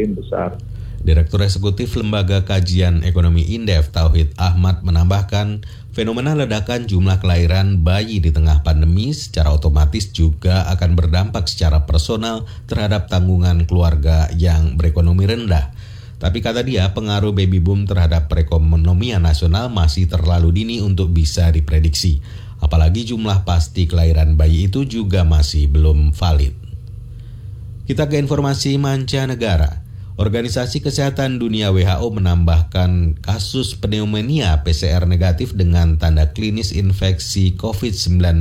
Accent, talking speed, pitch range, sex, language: native, 115 wpm, 85-105 Hz, male, Indonesian